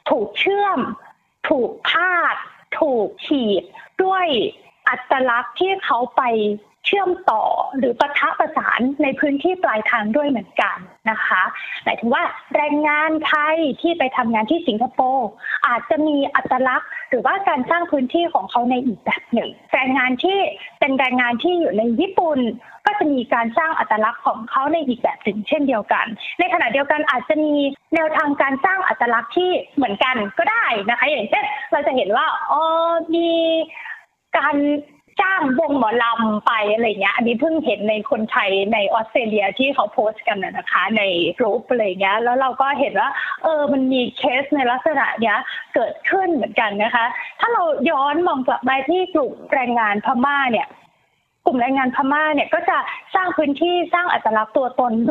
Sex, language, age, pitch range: female, Thai, 20-39, 245-335 Hz